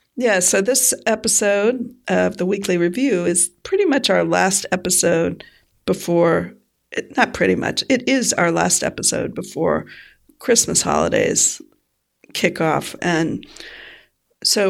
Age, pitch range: 50-69, 180-245 Hz